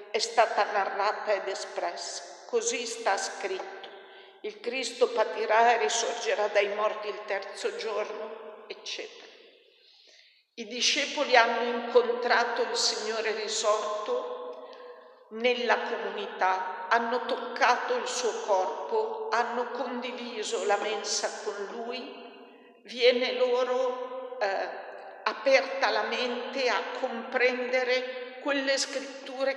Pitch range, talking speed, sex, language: 215-320 Hz, 100 wpm, female, Italian